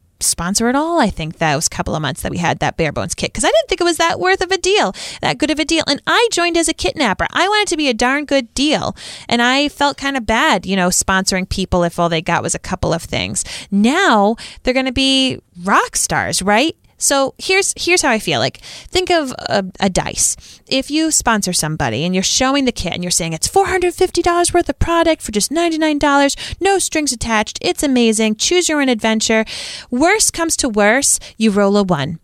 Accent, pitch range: American, 195-325 Hz